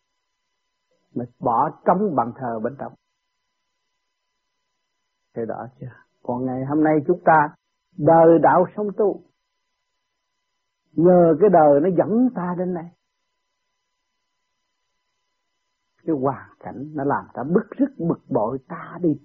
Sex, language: male, Vietnamese